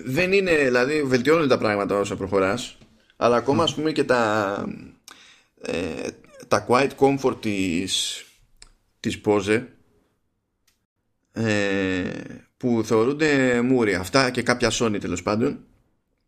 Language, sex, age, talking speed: Greek, male, 20-39, 115 wpm